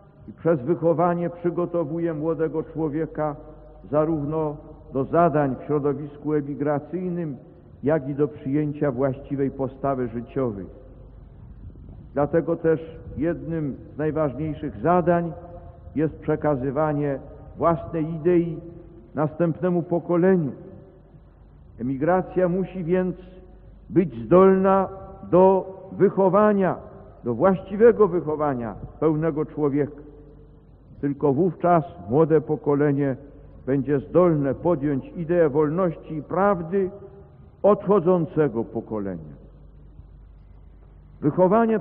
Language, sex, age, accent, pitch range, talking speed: English, male, 50-69, Polish, 145-180 Hz, 80 wpm